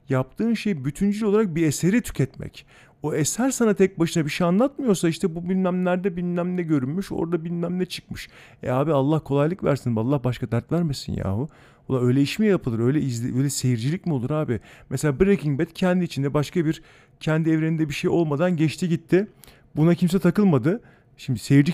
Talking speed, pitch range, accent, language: 180 wpm, 135-180 Hz, native, Turkish